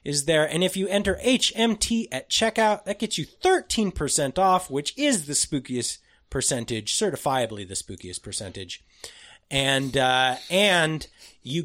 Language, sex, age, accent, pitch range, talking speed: English, male, 30-49, American, 120-190 Hz, 140 wpm